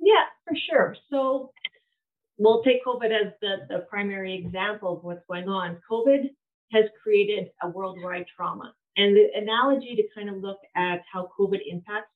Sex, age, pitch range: female, 30-49, 185-225 Hz